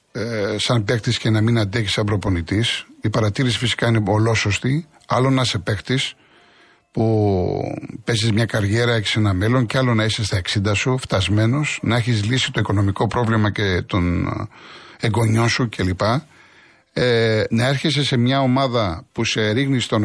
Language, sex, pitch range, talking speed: Greek, male, 110-145 Hz, 160 wpm